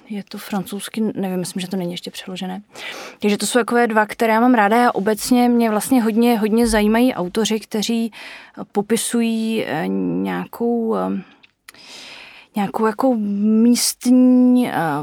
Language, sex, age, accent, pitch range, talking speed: Czech, female, 20-39, native, 180-220 Hz, 130 wpm